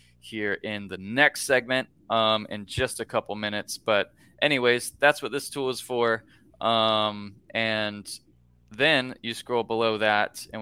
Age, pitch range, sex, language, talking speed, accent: 20-39, 100-120 Hz, male, English, 155 wpm, American